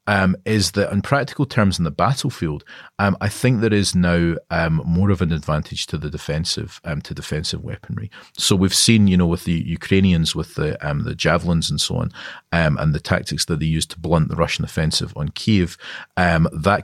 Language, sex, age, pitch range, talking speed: English, male, 40-59, 80-100 Hz, 210 wpm